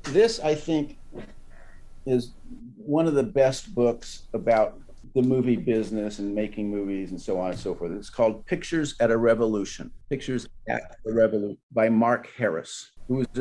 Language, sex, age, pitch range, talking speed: English, male, 50-69, 100-130 Hz, 160 wpm